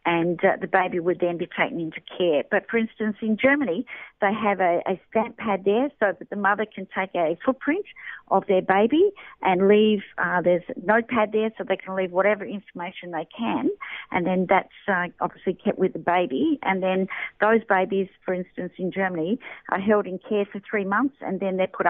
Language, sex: English, female